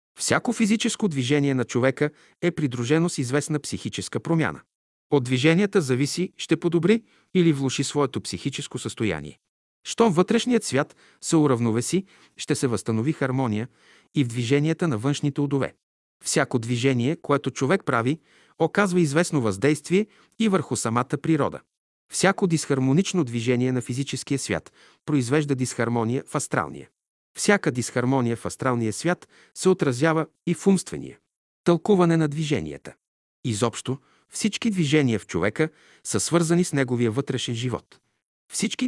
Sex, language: male, Bulgarian